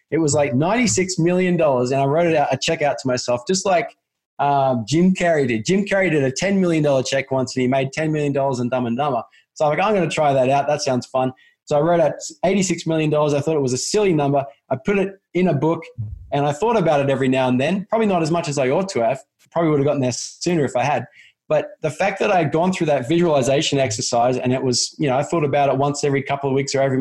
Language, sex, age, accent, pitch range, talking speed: English, male, 20-39, Australian, 130-165 Hz, 275 wpm